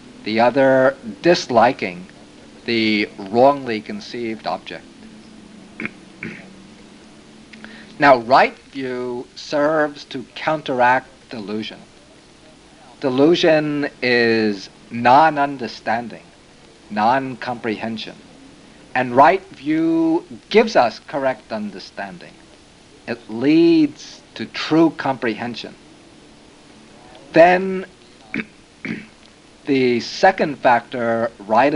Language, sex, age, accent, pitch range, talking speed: English, male, 50-69, American, 115-150 Hz, 65 wpm